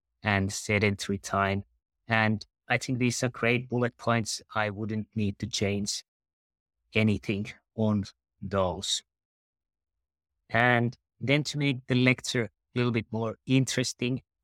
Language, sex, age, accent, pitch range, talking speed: English, male, 30-49, Finnish, 100-115 Hz, 125 wpm